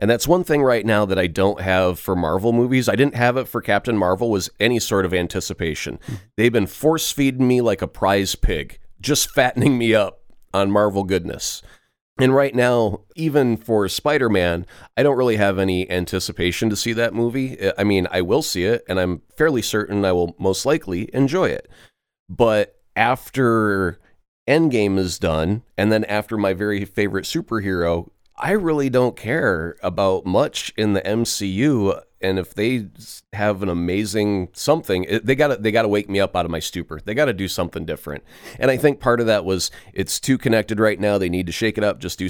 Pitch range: 95-125 Hz